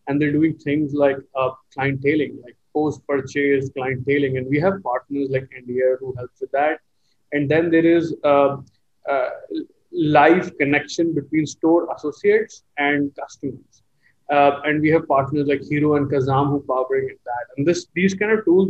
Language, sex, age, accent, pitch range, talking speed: English, male, 20-39, Indian, 135-155 Hz, 175 wpm